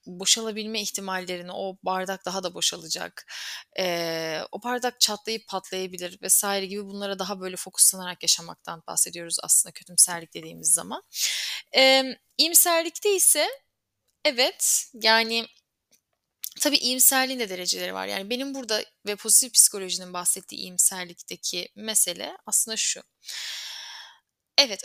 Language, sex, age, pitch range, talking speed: Turkish, female, 10-29, 185-265 Hz, 110 wpm